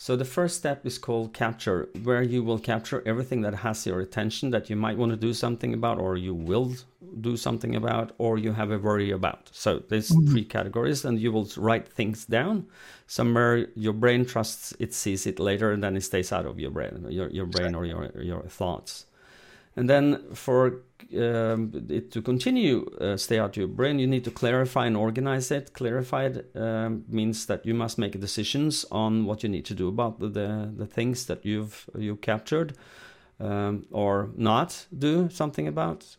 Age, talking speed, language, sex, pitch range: 40-59, 195 wpm, English, male, 100-120 Hz